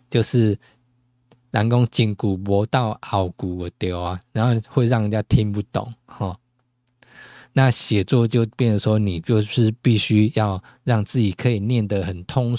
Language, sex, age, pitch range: Chinese, male, 20-39, 100-125 Hz